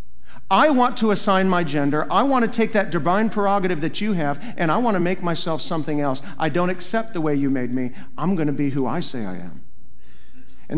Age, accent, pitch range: 50-69, American, 145-200 Hz